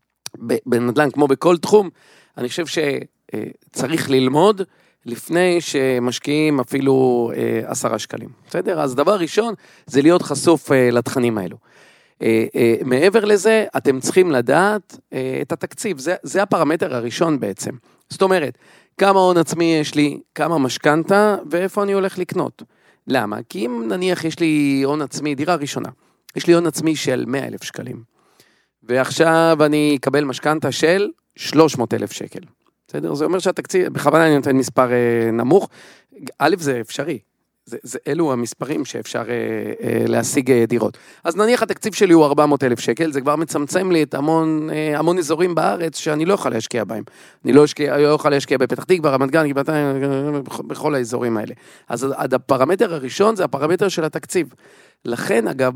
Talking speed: 145 wpm